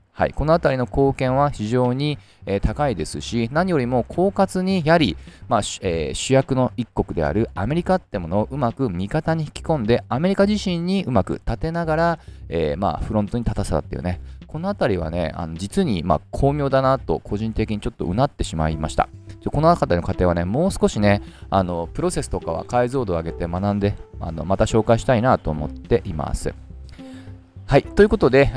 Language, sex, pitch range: Japanese, male, 95-145 Hz